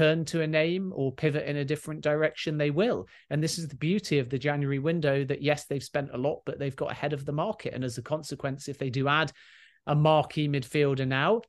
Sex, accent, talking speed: male, British, 240 wpm